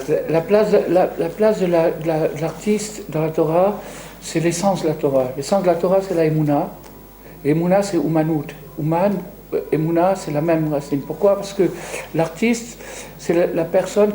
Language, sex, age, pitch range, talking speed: French, male, 60-79, 160-200 Hz, 180 wpm